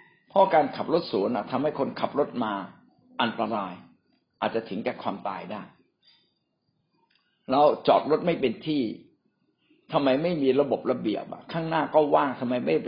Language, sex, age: Thai, male, 60-79